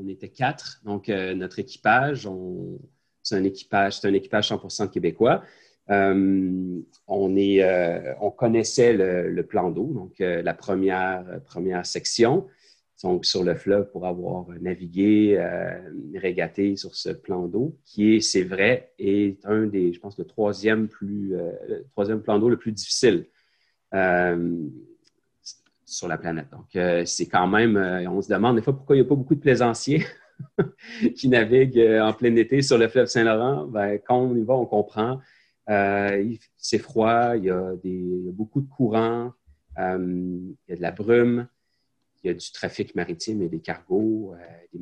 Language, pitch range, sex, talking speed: French, 90-115 Hz, male, 180 wpm